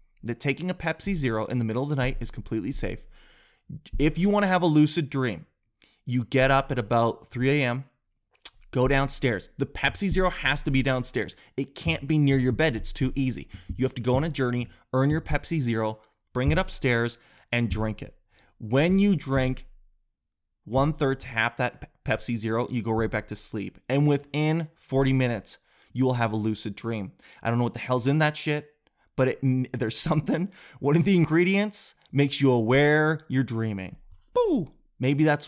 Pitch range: 120-150 Hz